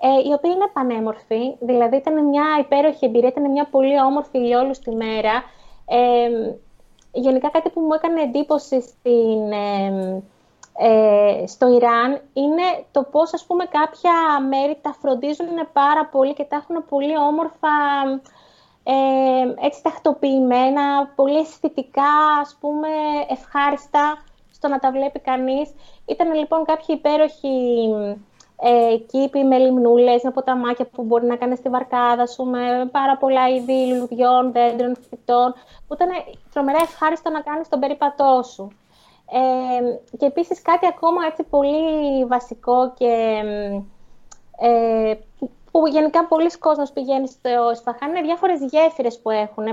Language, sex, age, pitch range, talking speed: Greek, female, 20-39, 245-300 Hz, 135 wpm